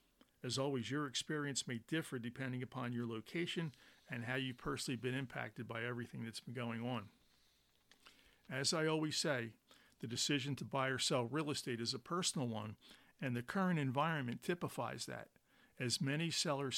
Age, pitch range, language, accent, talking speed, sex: 50-69, 125-150 Hz, English, American, 170 wpm, male